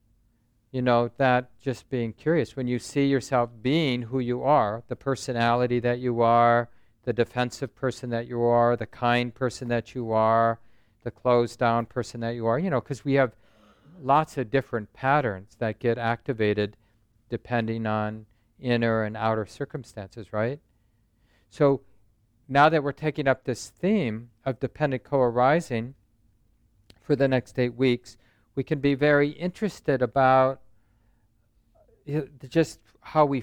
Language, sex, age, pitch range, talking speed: English, male, 50-69, 115-140 Hz, 145 wpm